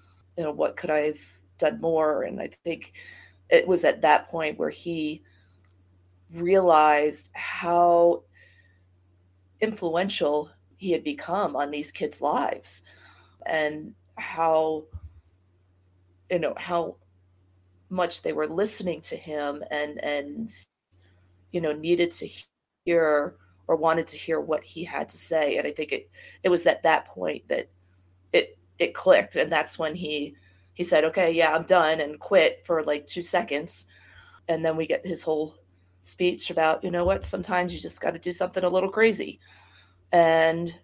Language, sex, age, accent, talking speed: English, female, 30-49, American, 155 wpm